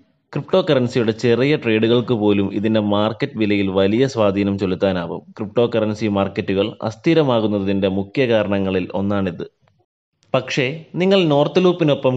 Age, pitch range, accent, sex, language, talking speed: 20-39, 105-135 Hz, native, male, Malayalam, 110 wpm